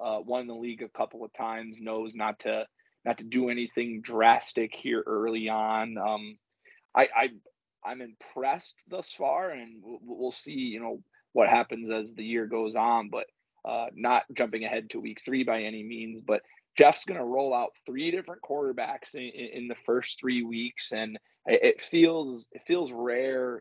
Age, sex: 20-39, male